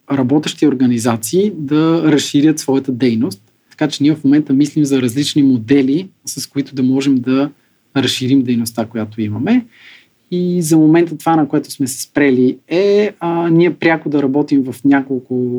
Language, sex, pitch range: Bulgarian, male, 125-155 Hz